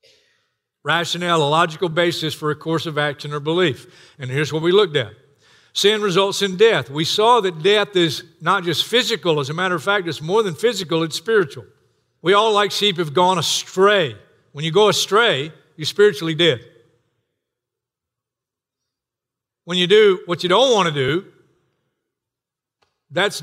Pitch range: 155-210 Hz